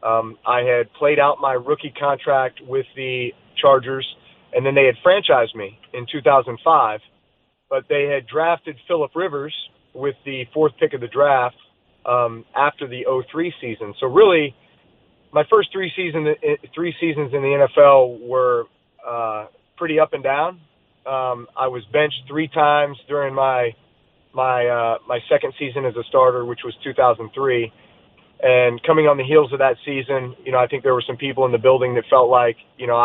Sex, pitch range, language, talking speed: male, 125-150 Hz, English, 185 wpm